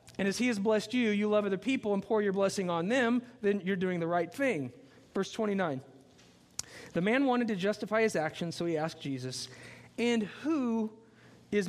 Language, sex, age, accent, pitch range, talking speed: English, male, 40-59, American, 175-225 Hz, 195 wpm